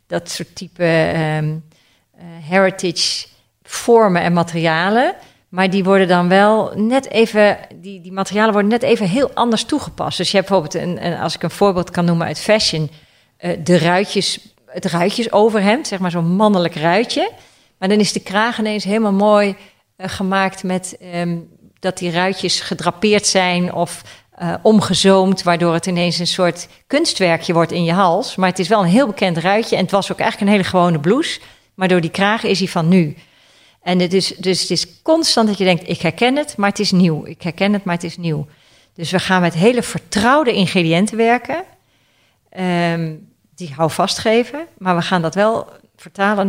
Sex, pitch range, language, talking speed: female, 175-210 Hz, Dutch, 190 wpm